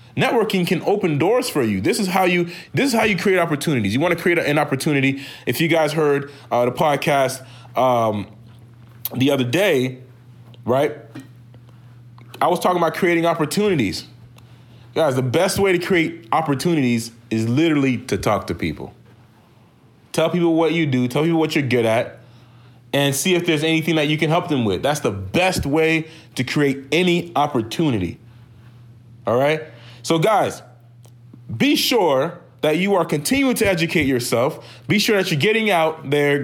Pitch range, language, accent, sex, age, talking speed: 120-170 Hz, English, American, male, 30-49, 170 wpm